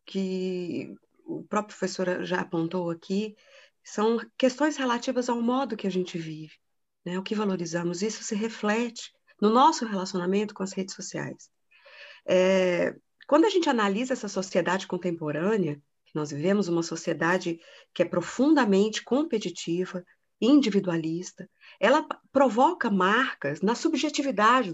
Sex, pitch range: female, 185-260 Hz